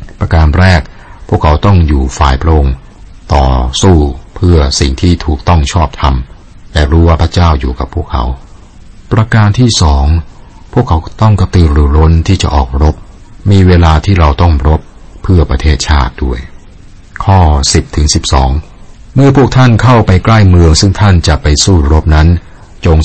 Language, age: Thai, 60-79